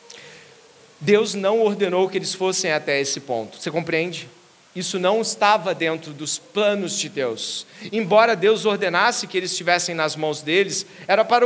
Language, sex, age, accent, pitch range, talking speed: Portuguese, male, 40-59, Brazilian, 180-250 Hz, 155 wpm